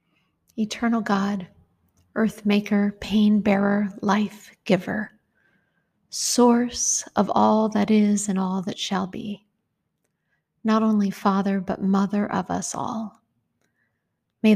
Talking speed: 110 wpm